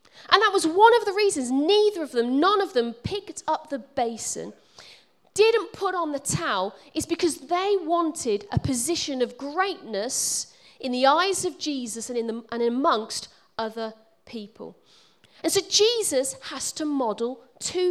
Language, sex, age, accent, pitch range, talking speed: English, female, 40-59, British, 230-340 Hz, 160 wpm